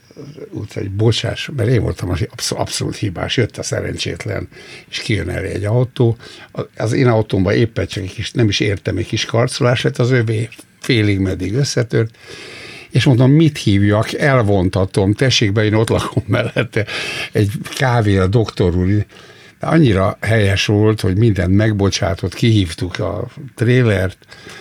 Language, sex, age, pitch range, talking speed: Hungarian, male, 60-79, 95-120 Hz, 150 wpm